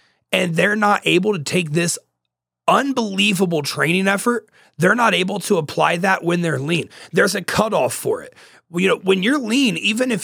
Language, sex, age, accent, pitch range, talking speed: English, male, 30-49, American, 155-190 Hz, 180 wpm